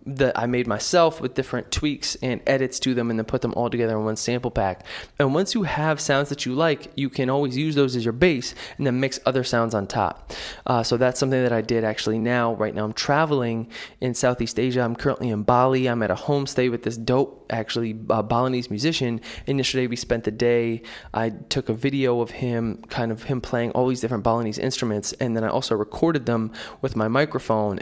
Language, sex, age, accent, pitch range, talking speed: English, male, 20-39, American, 115-130 Hz, 225 wpm